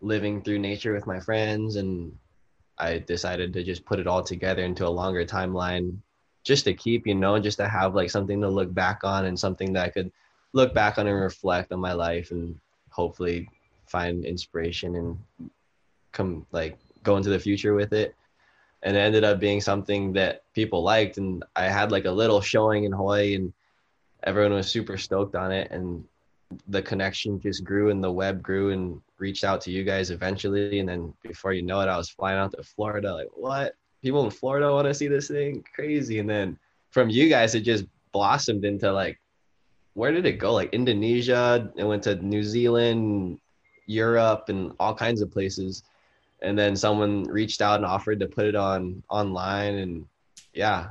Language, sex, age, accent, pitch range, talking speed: English, male, 10-29, American, 95-105 Hz, 195 wpm